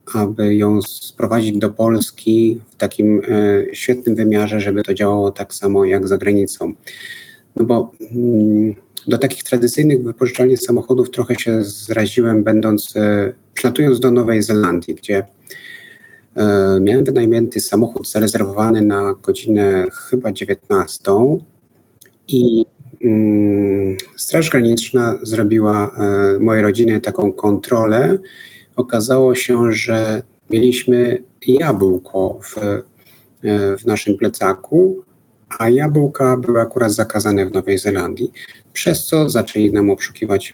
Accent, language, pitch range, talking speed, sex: native, Polish, 100-125 Hz, 110 wpm, male